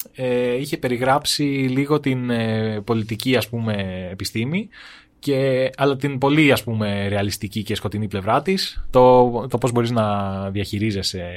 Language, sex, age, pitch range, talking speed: Greek, male, 20-39, 105-135 Hz, 130 wpm